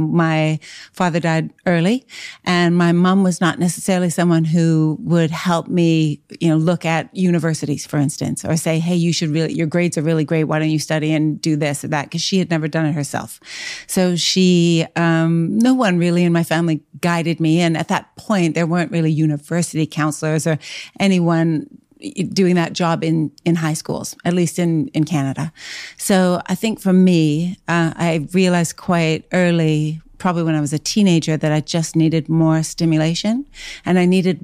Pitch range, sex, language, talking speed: 155-175 Hz, female, English, 190 wpm